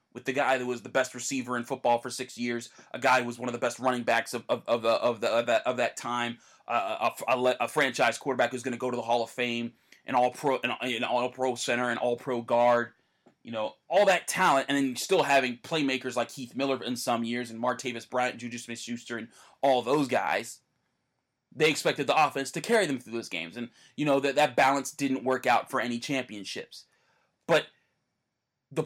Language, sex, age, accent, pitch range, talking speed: English, male, 20-39, American, 120-160 Hz, 230 wpm